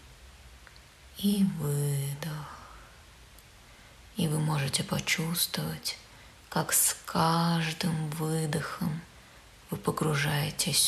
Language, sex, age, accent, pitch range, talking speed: Russian, female, 20-39, native, 145-170 Hz, 65 wpm